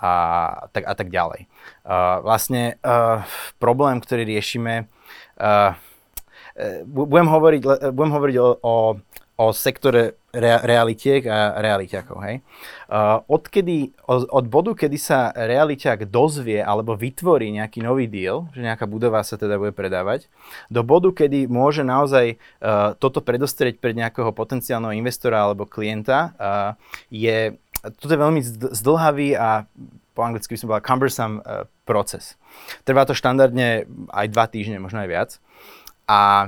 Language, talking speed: Slovak, 125 wpm